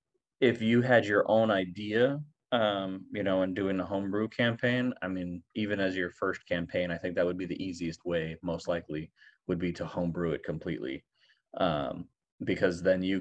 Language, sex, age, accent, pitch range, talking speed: English, male, 30-49, American, 90-105 Hz, 185 wpm